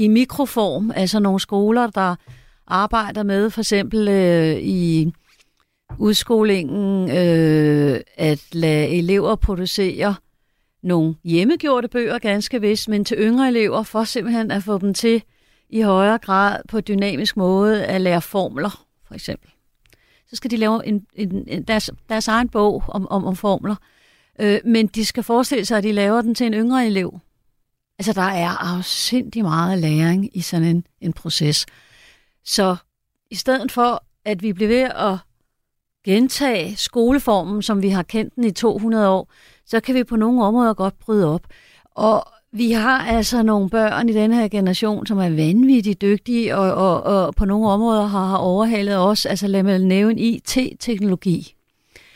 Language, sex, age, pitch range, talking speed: Danish, female, 40-59, 185-225 Hz, 165 wpm